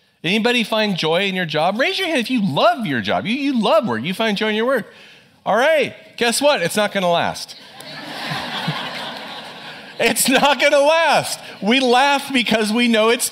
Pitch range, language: 135-220 Hz, English